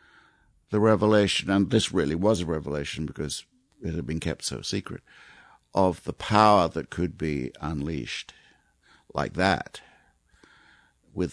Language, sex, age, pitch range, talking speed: English, male, 60-79, 75-100 Hz, 130 wpm